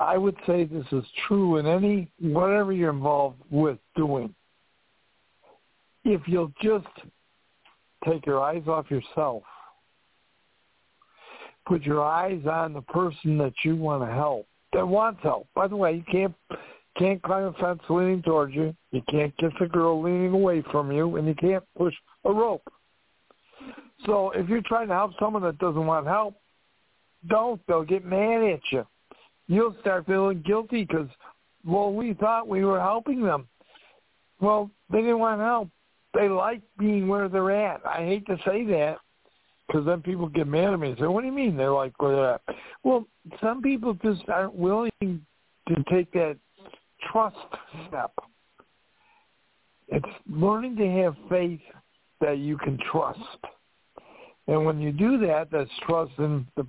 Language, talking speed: English, 165 wpm